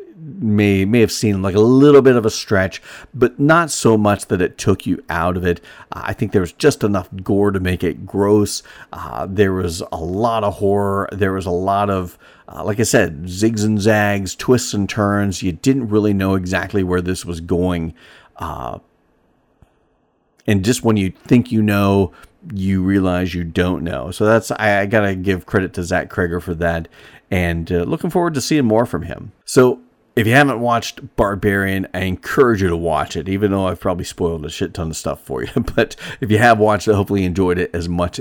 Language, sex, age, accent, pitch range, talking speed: English, male, 40-59, American, 90-110 Hz, 210 wpm